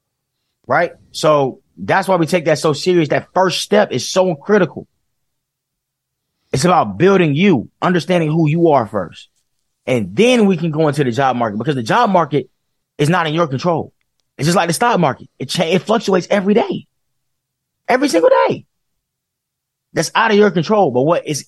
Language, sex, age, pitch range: English, male, 30-49, 140-200 Hz